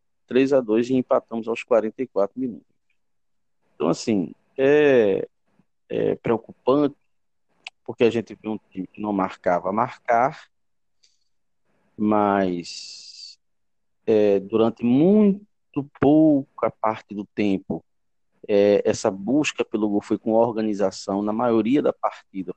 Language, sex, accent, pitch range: Portuguese, male, Brazilian, 105-135 Hz